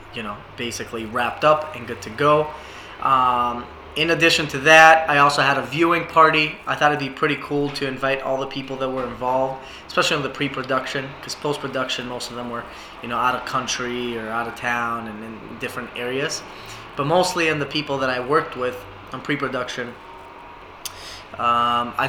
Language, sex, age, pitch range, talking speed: English, male, 20-39, 120-150 Hz, 185 wpm